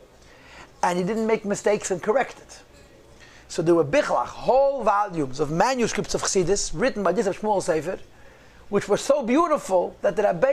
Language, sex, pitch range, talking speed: English, male, 175-230 Hz, 170 wpm